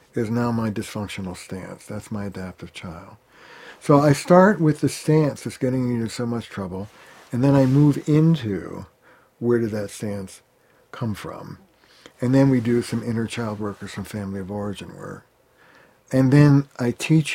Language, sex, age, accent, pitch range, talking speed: English, male, 60-79, American, 105-130 Hz, 175 wpm